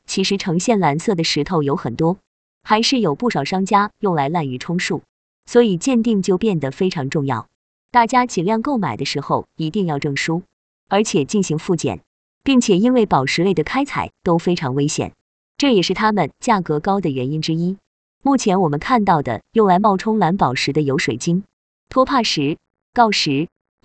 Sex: female